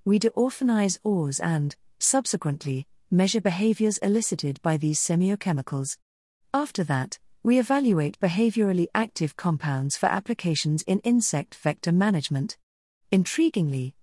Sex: female